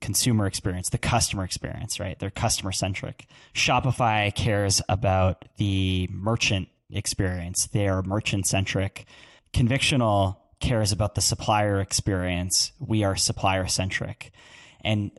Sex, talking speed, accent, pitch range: male, 120 wpm, American, 95-115 Hz